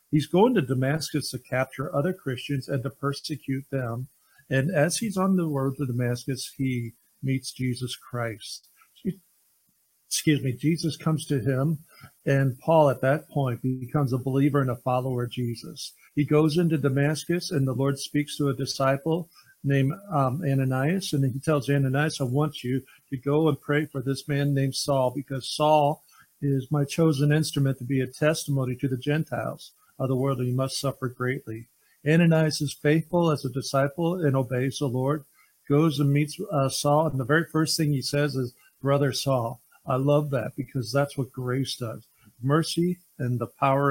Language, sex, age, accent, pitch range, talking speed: English, male, 50-69, American, 130-150 Hz, 180 wpm